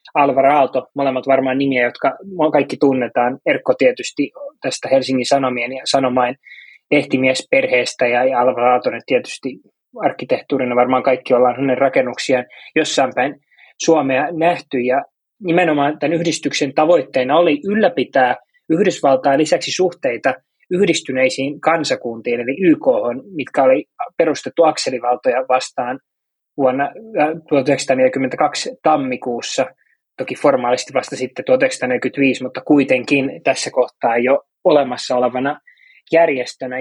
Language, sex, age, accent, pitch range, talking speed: Finnish, male, 20-39, native, 130-155 Hz, 105 wpm